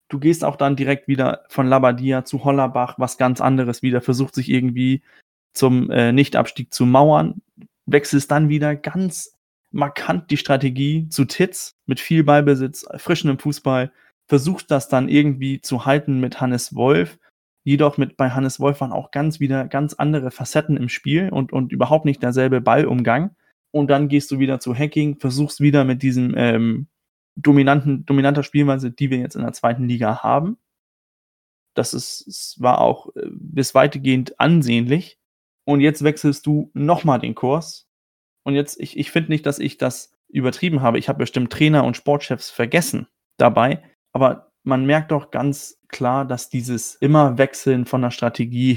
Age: 20-39